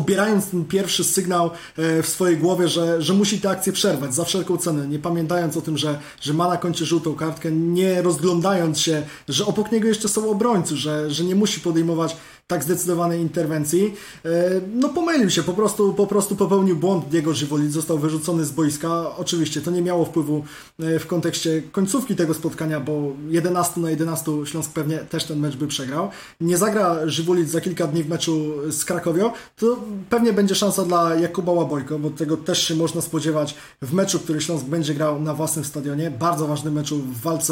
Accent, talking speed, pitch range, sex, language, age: native, 185 wpm, 155-180 Hz, male, Polish, 20-39